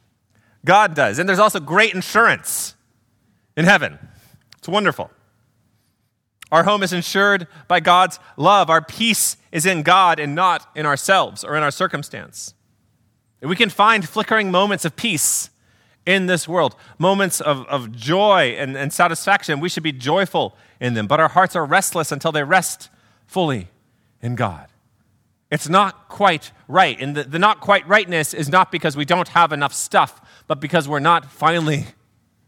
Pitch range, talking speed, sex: 110-175 Hz, 160 wpm, male